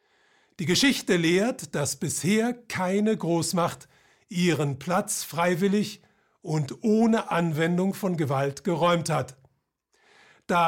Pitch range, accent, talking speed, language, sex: 150-205 Hz, German, 100 wpm, German, male